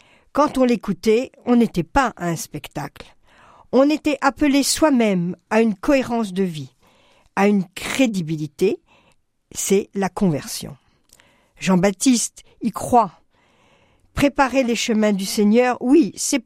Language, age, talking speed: French, 50-69, 120 wpm